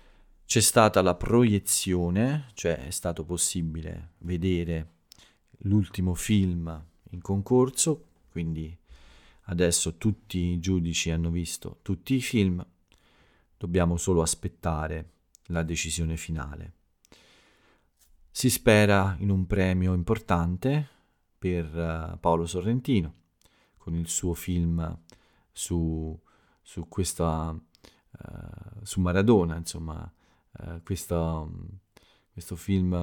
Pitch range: 85-100 Hz